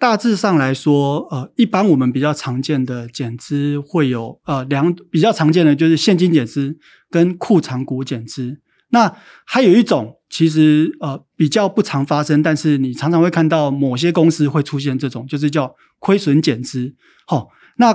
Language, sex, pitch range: Chinese, male, 130-160 Hz